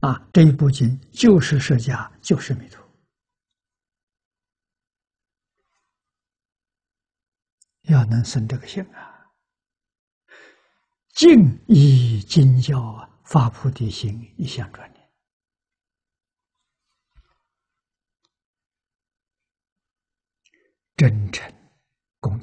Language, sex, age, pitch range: Chinese, male, 60-79, 115-170 Hz